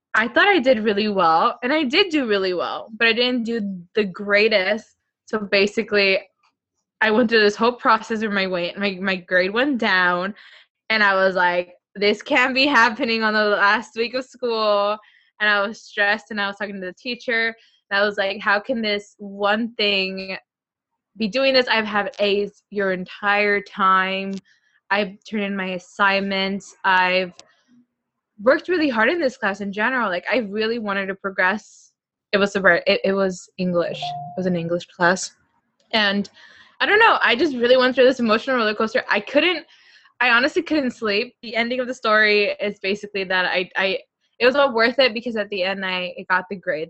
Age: 20-39